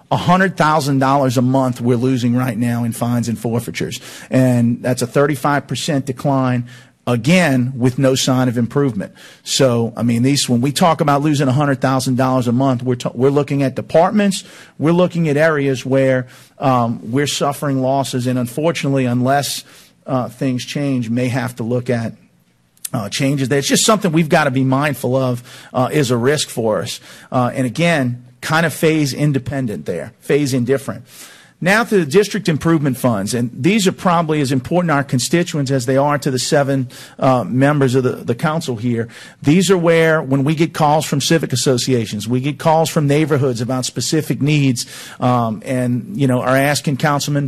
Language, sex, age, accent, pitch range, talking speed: English, male, 50-69, American, 125-150 Hz, 175 wpm